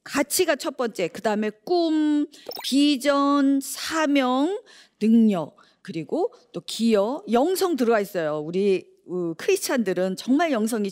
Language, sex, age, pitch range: Korean, female, 50-69, 190-305 Hz